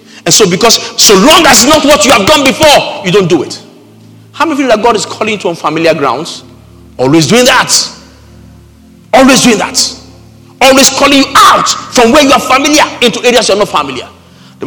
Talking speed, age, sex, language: 210 wpm, 50-69, male, English